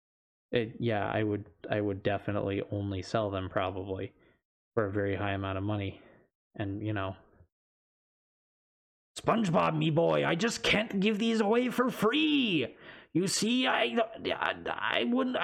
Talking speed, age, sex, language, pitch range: 150 wpm, 20-39, male, English, 105-145 Hz